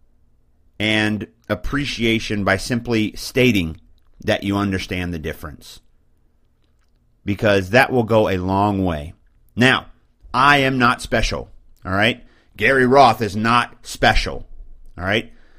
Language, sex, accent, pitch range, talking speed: English, male, American, 95-125 Hz, 120 wpm